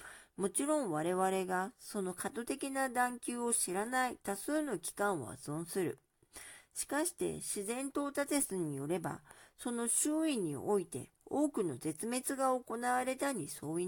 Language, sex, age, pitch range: Japanese, female, 50-69, 185-270 Hz